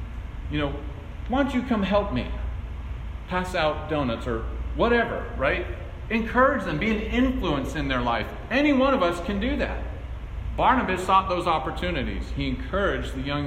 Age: 40-59